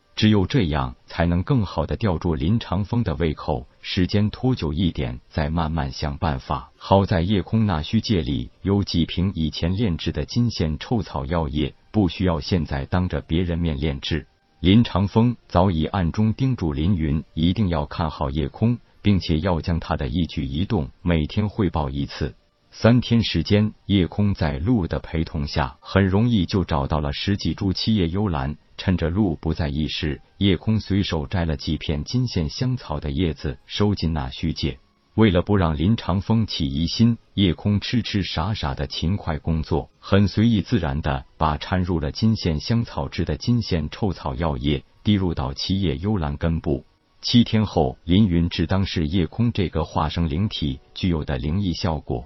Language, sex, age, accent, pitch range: Chinese, male, 50-69, native, 80-105 Hz